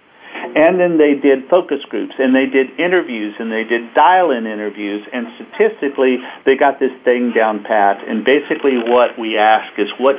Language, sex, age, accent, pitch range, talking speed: English, male, 50-69, American, 120-155 Hz, 175 wpm